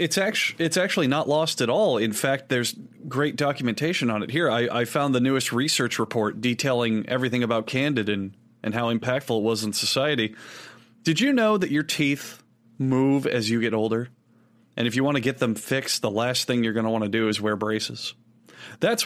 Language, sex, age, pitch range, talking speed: English, male, 30-49, 115-150 Hz, 200 wpm